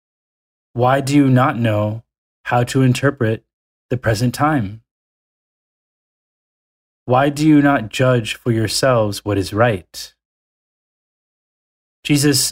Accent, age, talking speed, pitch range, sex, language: American, 20-39, 105 wpm, 100-130 Hz, male, English